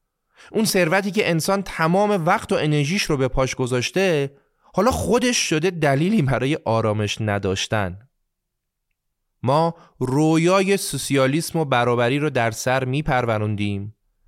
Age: 30-49